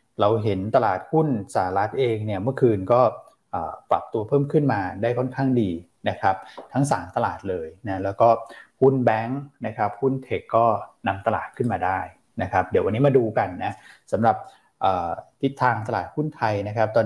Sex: male